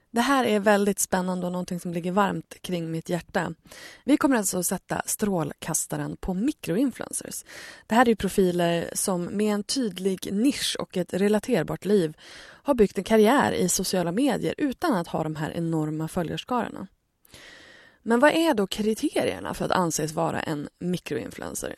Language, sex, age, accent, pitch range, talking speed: Swedish, female, 20-39, native, 170-230 Hz, 165 wpm